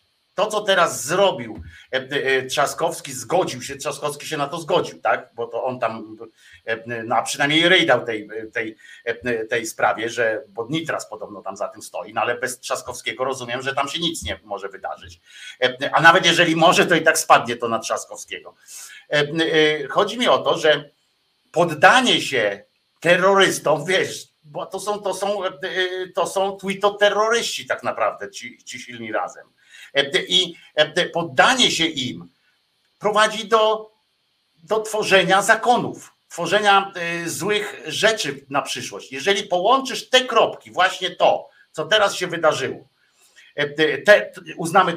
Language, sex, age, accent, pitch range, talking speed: Polish, male, 50-69, native, 140-195 Hz, 145 wpm